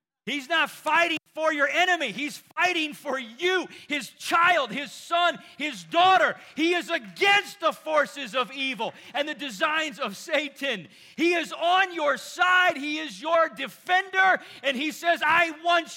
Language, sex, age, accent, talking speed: English, male, 40-59, American, 160 wpm